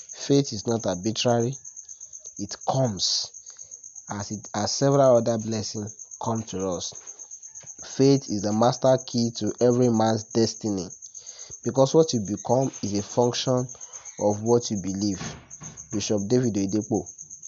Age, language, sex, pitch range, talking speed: 30-49, English, male, 105-130 Hz, 130 wpm